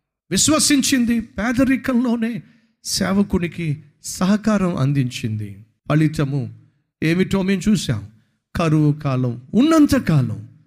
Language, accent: Telugu, native